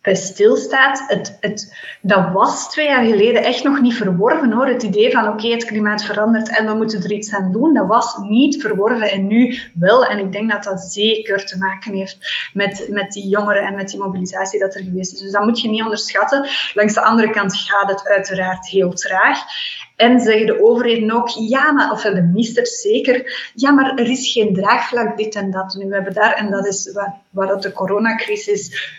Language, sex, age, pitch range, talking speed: Dutch, female, 20-39, 195-235 Hz, 210 wpm